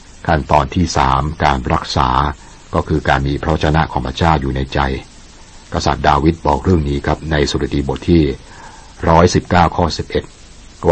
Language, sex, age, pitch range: Thai, male, 60-79, 70-85 Hz